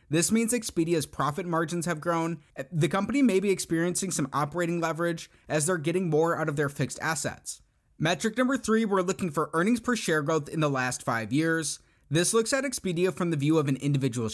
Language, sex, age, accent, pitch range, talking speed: English, male, 30-49, American, 150-185 Hz, 205 wpm